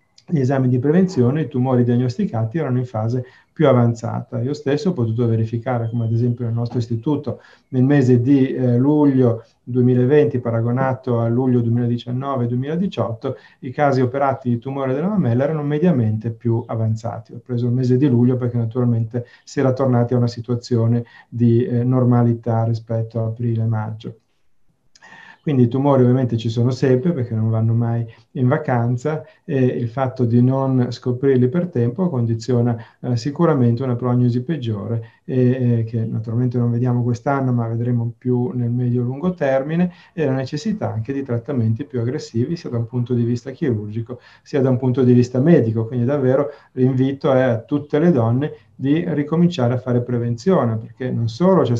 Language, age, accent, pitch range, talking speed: Italian, 40-59, native, 120-135 Hz, 165 wpm